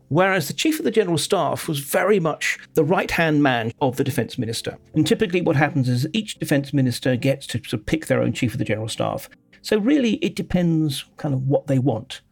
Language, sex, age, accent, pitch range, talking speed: English, male, 50-69, British, 130-185 Hz, 225 wpm